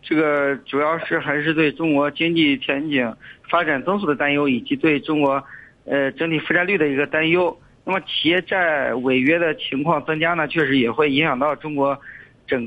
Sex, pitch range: male, 135-160 Hz